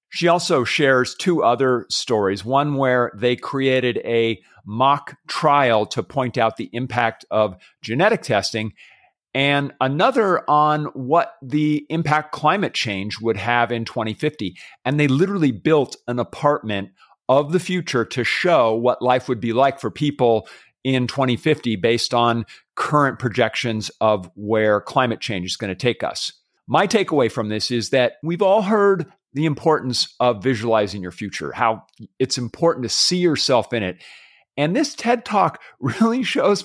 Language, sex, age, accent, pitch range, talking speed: English, male, 40-59, American, 120-170 Hz, 155 wpm